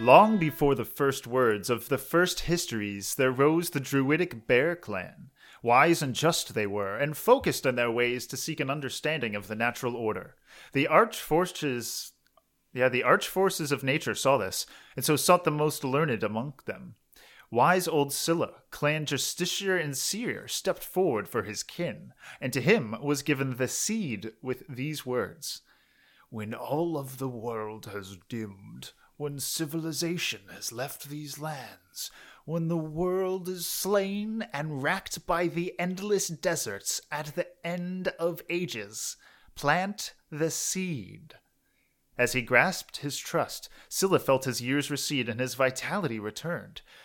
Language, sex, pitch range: English, male, 125-170 Hz